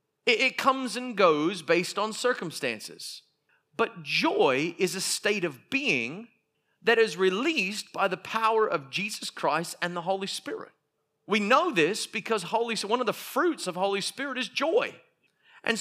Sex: male